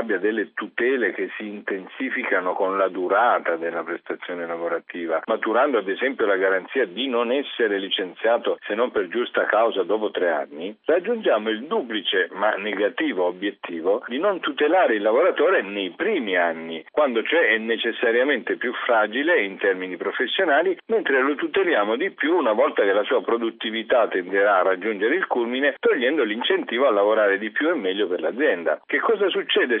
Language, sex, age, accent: Italian, male, 50-69, native